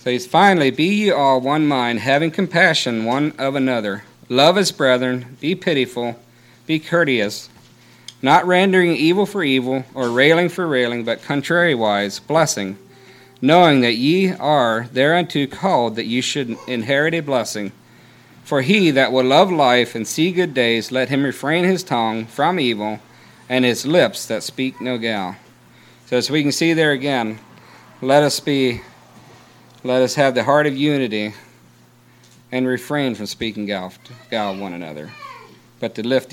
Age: 50-69